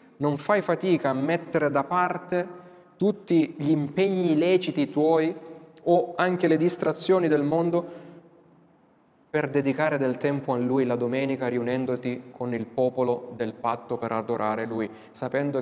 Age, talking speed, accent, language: 20-39, 140 wpm, native, Italian